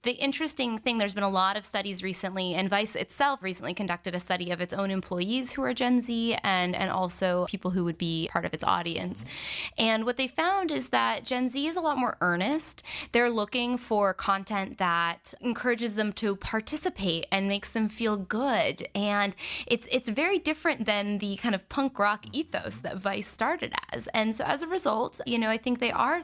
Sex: female